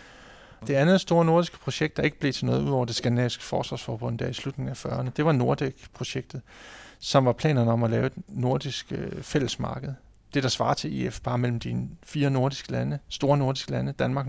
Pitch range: 125-150 Hz